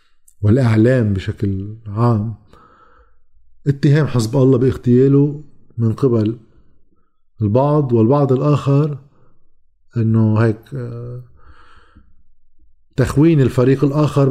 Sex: male